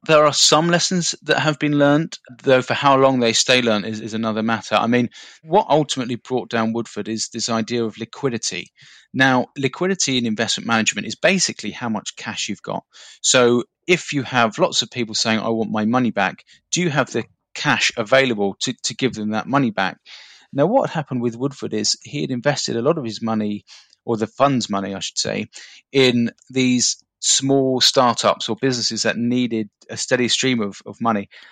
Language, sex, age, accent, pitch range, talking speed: English, male, 30-49, British, 115-135 Hz, 200 wpm